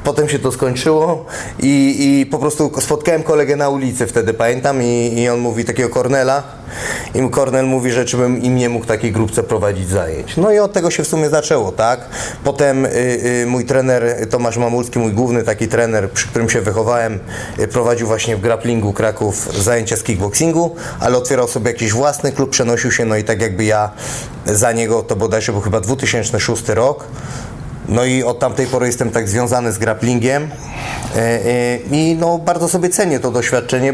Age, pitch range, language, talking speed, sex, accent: 20-39, 120-140 Hz, Polish, 180 wpm, male, native